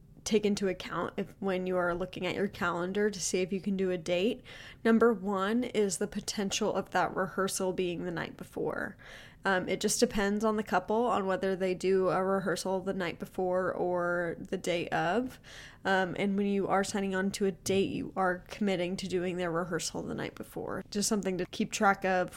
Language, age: English, 10-29